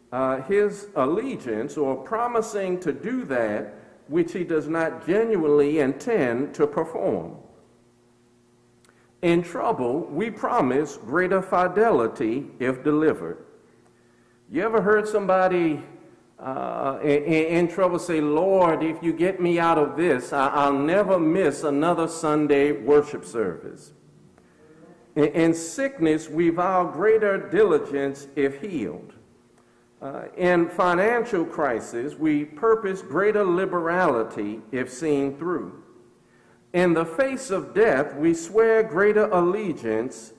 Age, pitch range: 50-69, 145-200 Hz